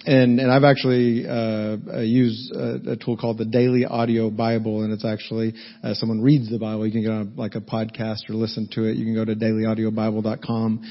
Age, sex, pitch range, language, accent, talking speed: 40-59, male, 110-125 Hz, English, American, 210 wpm